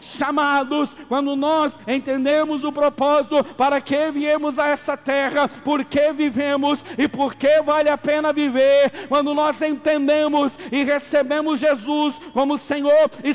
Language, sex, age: Portuguese, male, 50-69